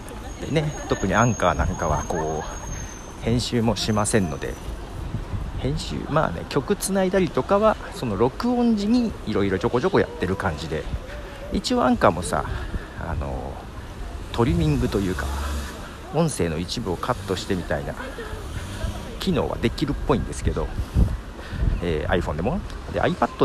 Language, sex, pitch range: Japanese, male, 85-120 Hz